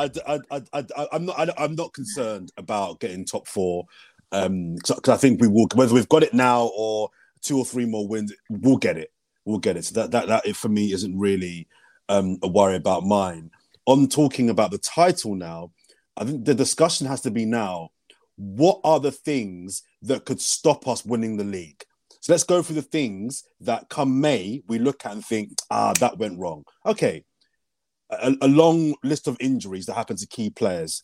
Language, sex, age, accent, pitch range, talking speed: English, male, 30-49, British, 105-150 Hz, 205 wpm